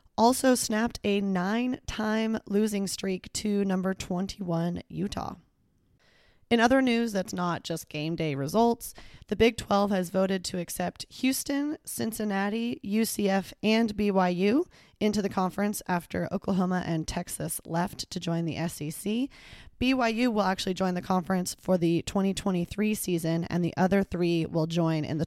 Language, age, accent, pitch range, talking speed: English, 20-39, American, 170-215 Hz, 145 wpm